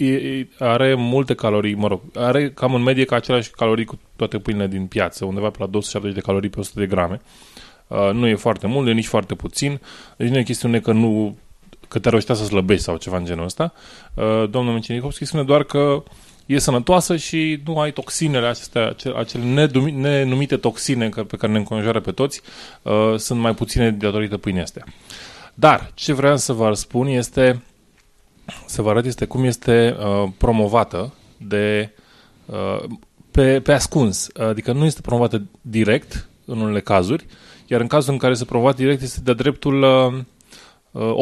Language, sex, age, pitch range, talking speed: Romanian, male, 20-39, 105-130 Hz, 175 wpm